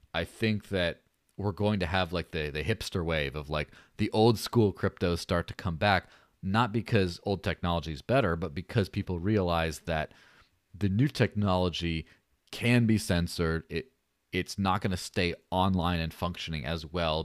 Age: 30-49